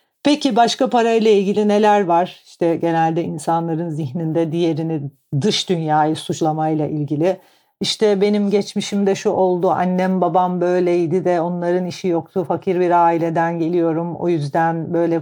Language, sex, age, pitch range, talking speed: Turkish, female, 50-69, 160-180 Hz, 135 wpm